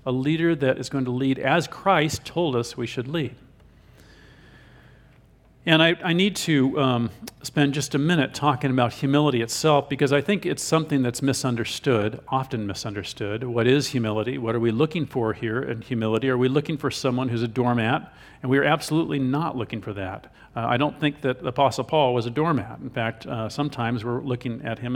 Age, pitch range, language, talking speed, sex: 50-69, 120-150 Hz, English, 195 wpm, male